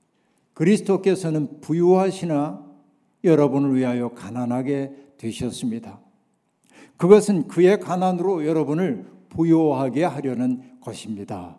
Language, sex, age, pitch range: Korean, male, 60-79, 155-190 Hz